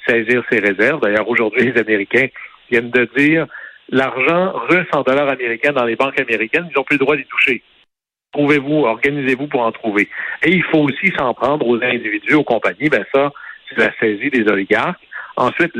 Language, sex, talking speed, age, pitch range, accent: French, male, 195 wpm, 60-79, 115-145 Hz, French